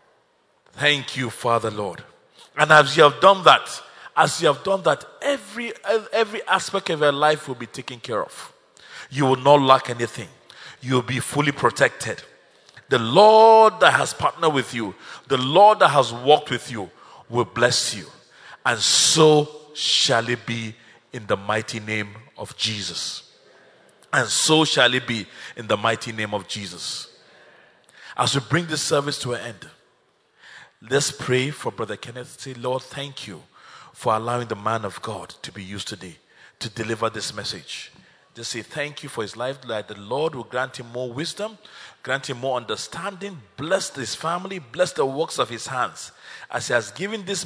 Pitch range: 115-155 Hz